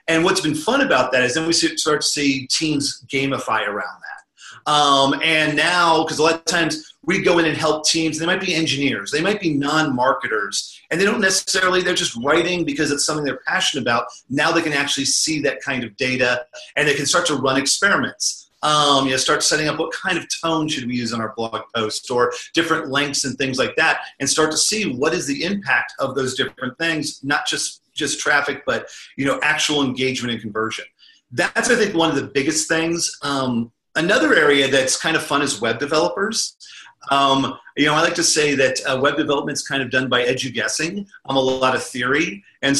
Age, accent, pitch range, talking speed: 40-59, American, 130-160 Hz, 220 wpm